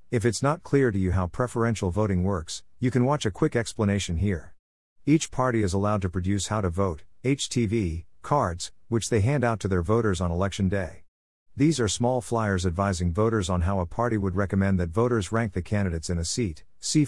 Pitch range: 90-115 Hz